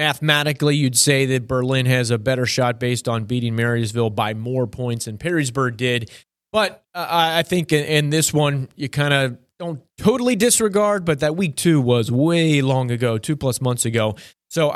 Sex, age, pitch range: male, 30-49, 125-150 Hz